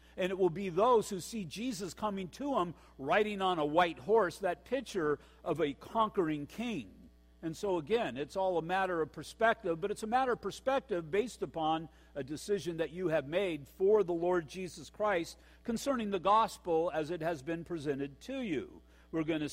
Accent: American